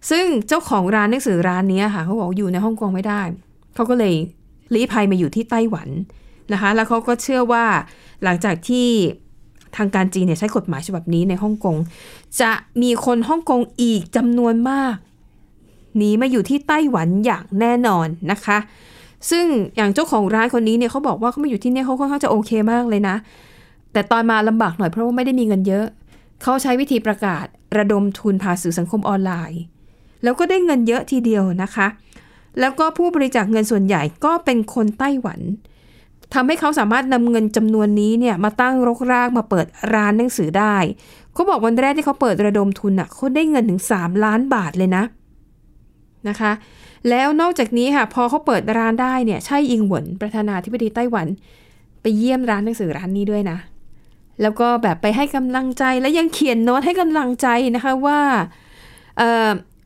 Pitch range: 200-250 Hz